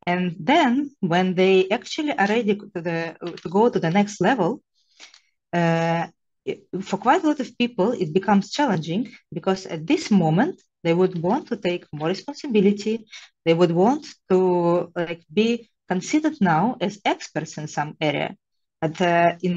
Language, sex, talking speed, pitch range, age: English, female, 160 wpm, 165-220 Hz, 20-39